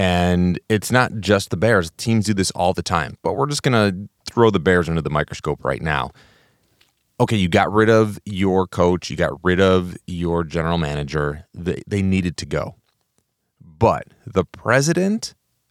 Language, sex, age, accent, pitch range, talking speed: English, male, 30-49, American, 95-135 Hz, 180 wpm